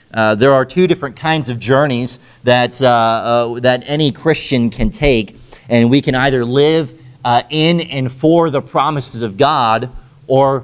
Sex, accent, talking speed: male, American, 170 wpm